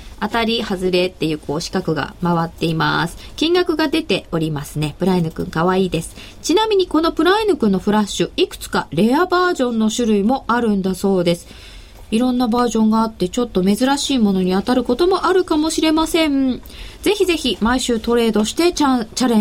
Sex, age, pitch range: female, 20-39, 200-310 Hz